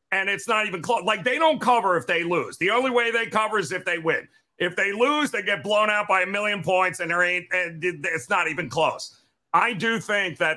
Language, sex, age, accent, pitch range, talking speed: English, male, 50-69, American, 160-205 Hz, 250 wpm